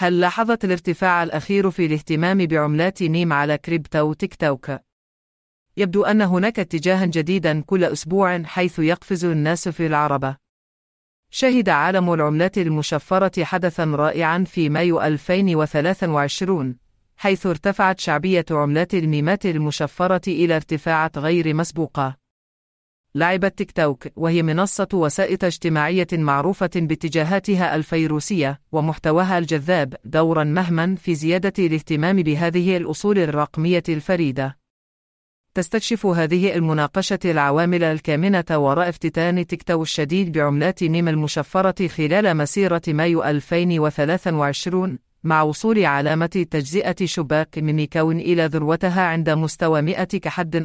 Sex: female